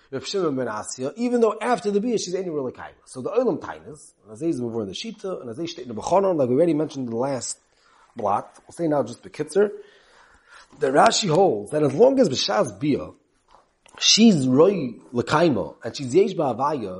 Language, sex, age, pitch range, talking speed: English, male, 30-49, 150-225 Hz, 160 wpm